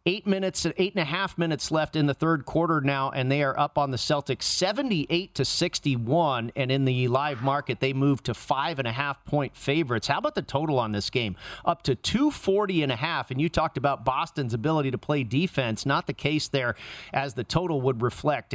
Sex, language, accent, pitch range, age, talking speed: male, English, American, 135-165 Hz, 40-59, 220 wpm